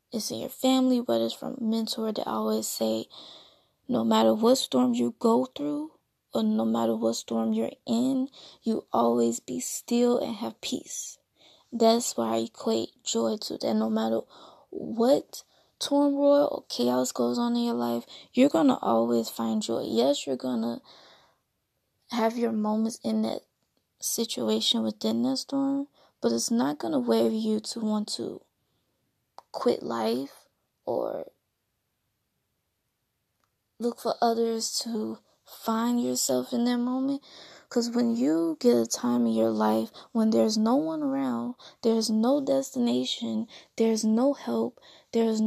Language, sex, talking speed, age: English, female, 150 wpm, 20-39